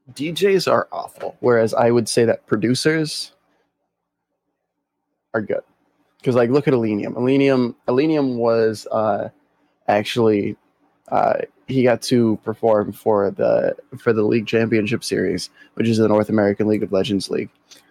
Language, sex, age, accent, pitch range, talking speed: English, male, 20-39, American, 110-125 Hz, 140 wpm